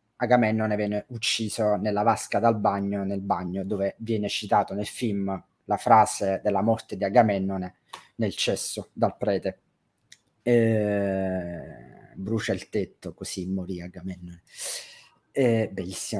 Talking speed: 120 wpm